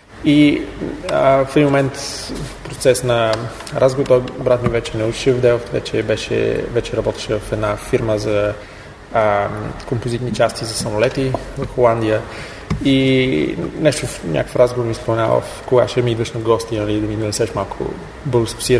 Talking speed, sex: 155 wpm, male